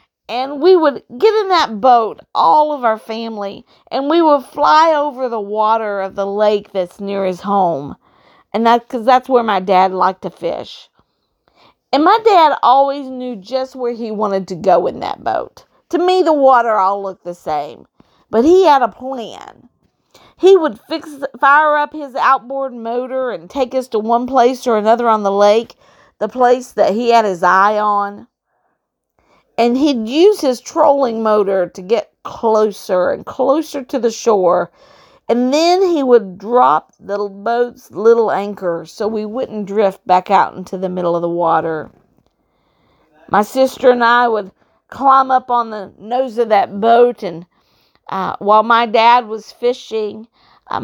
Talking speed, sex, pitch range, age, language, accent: 170 wpm, female, 205-260 Hz, 40-59, English, American